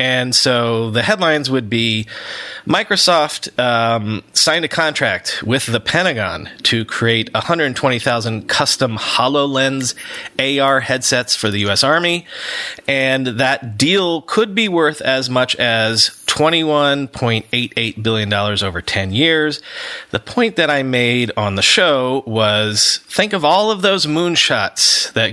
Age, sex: 30-49, male